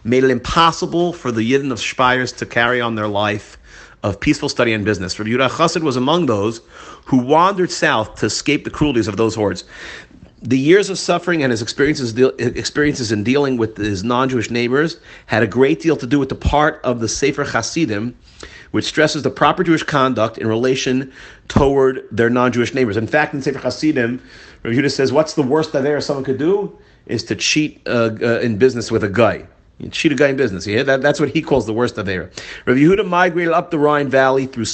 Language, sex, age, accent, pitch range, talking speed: English, male, 40-59, American, 110-145 Hz, 210 wpm